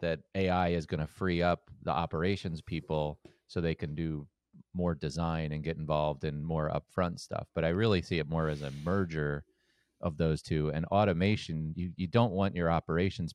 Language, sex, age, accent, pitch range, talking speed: English, male, 30-49, American, 75-85 Hz, 195 wpm